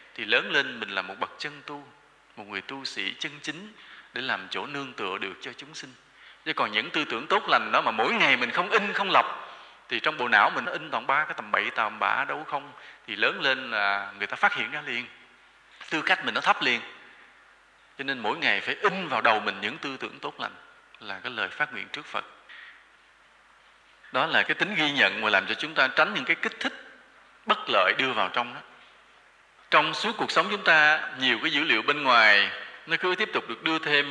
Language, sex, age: English, male, 20-39